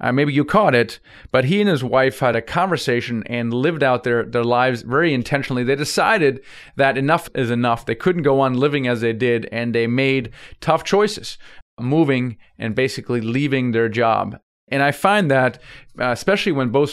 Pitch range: 120-145 Hz